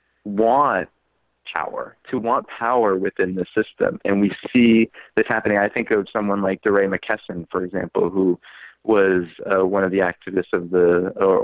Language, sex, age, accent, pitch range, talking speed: English, male, 20-39, American, 90-110 Hz, 170 wpm